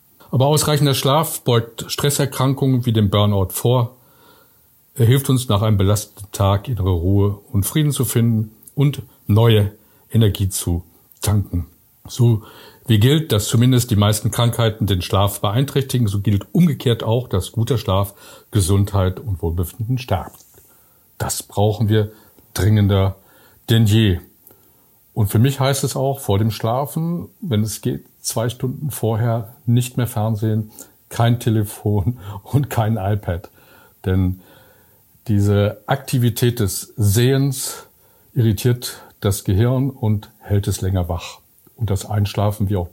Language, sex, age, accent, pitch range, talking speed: German, male, 50-69, German, 100-125 Hz, 135 wpm